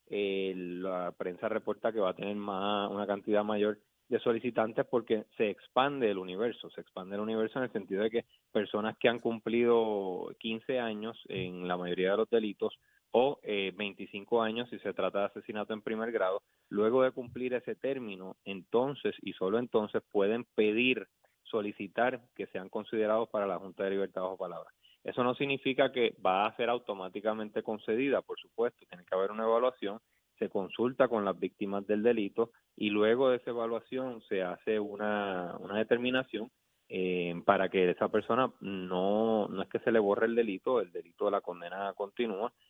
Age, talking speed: 20-39, 175 wpm